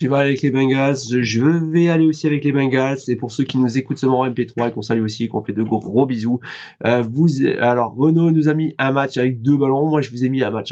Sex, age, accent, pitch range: male, 20-39, French, 130-160 Hz